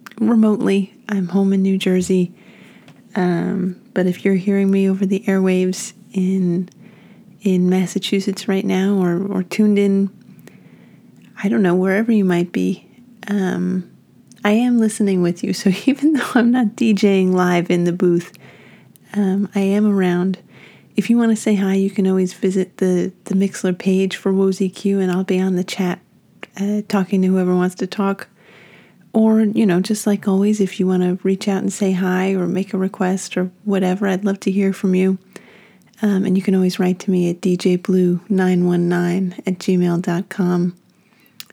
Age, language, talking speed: 30-49, English, 175 wpm